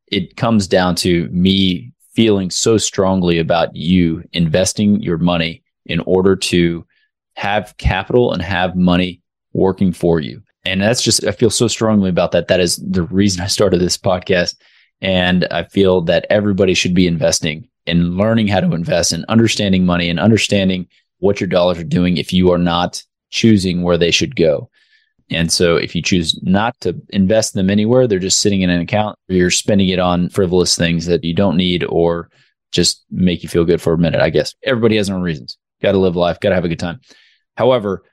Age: 20-39